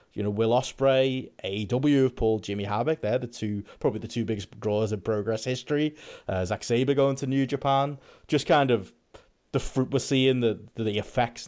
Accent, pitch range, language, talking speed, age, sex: British, 105-135 Hz, English, 195 wpm, 30-49, male